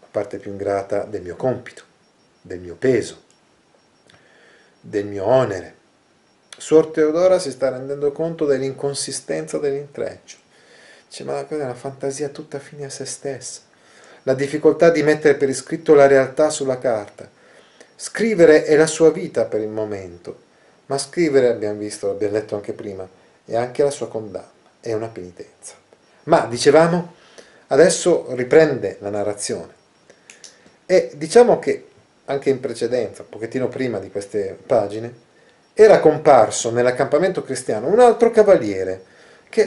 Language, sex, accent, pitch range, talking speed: Italian, male, native, 120-170 Hz, 140 wpm